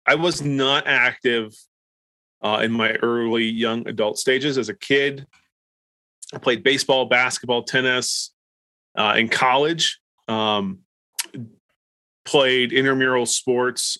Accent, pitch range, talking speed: American, 115-135 Hz, 110 wpm